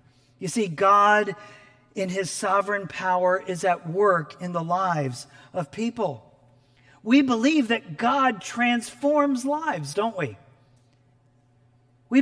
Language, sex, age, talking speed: English, male, 40-59, 120 wpm